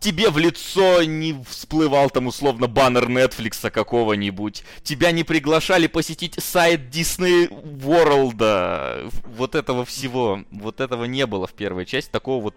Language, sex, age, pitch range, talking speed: Russian, male, 20-39, 110-155 Hz, 140 wpm